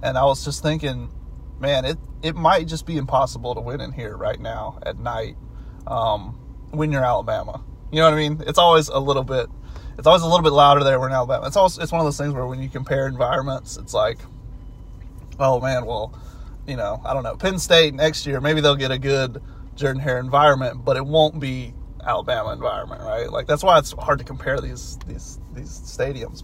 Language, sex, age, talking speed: English, male, 30-49, 215 wpm